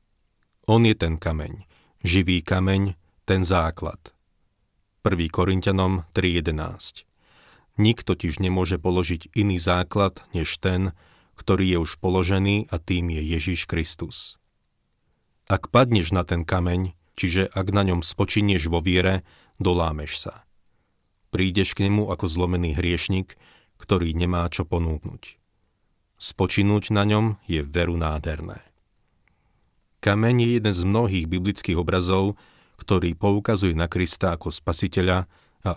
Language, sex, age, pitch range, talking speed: Slovak, male, 40-59, 85-100 Hz, 120 wpm